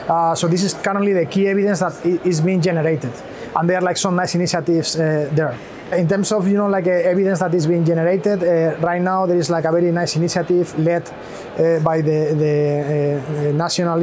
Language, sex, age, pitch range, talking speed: English, male, 20-39, 165-185 Hz, 220 wpm